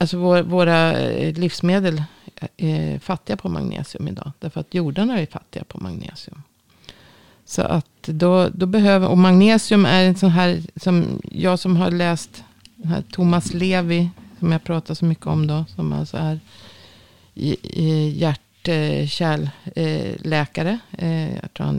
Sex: female